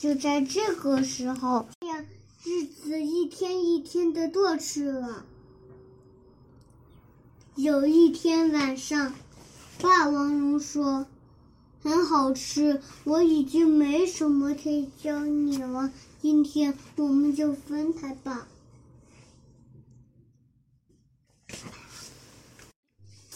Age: 10-29